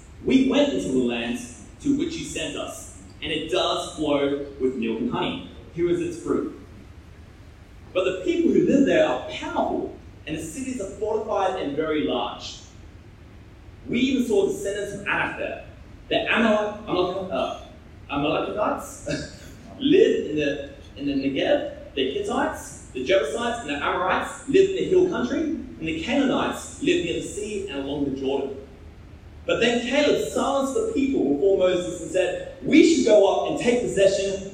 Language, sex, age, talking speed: English, male, 30-49, 155 wpm